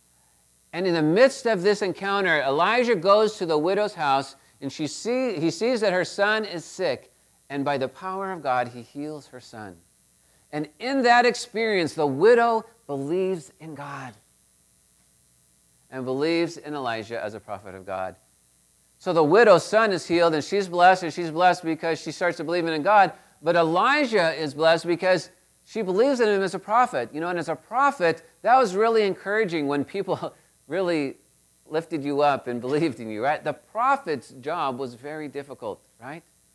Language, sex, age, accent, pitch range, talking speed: English, male, 40-59, American, 120-190 Hz, 180 wpm